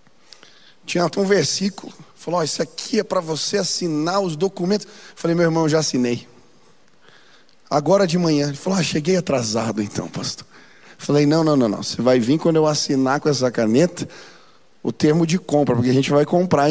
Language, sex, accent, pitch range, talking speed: Portuguese, male, Brazilian, 140-195 Hz, 190 wpm